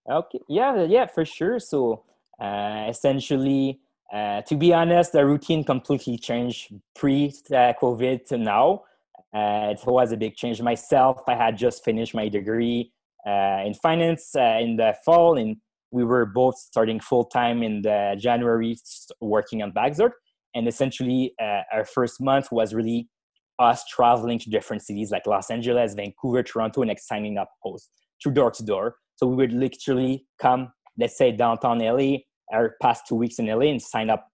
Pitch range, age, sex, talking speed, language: 110-130 Hz, 20-39, male, 165 wpm, English